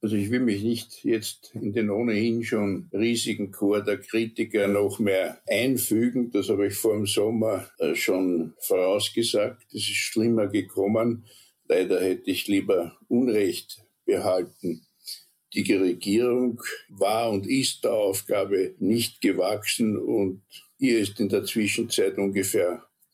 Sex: male